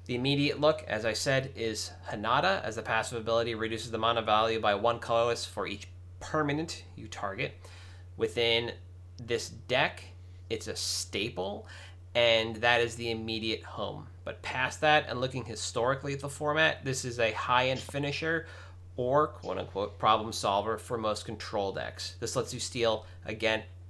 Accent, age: American, 30-49